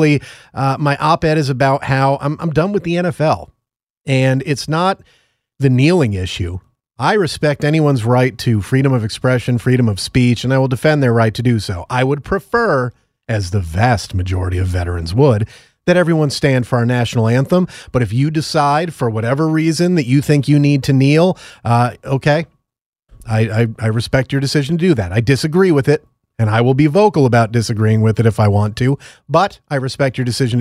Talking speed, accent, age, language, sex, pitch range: 200 wpm, American, 30-49, English, male, 120-155 Hz